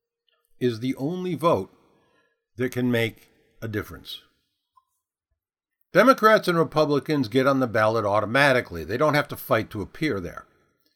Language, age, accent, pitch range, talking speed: English, 60-79, American, 125-190 Hz, 135 wpm